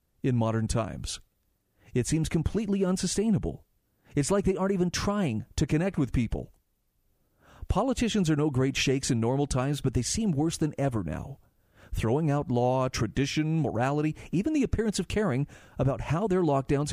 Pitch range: 120-165 Hz